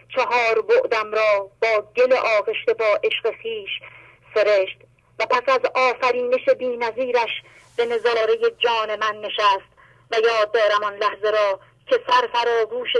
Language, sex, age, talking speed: English, female, 30-49, 145 wpm